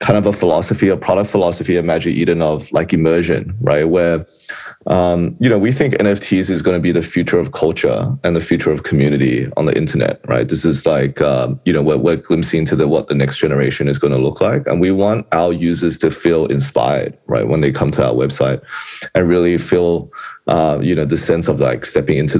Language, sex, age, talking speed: English, male, 20-39, 230 wpm